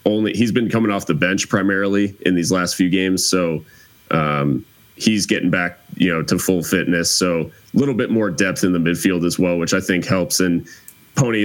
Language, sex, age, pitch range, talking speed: English, male, 30-49, 85-95 Hz, 210 wpm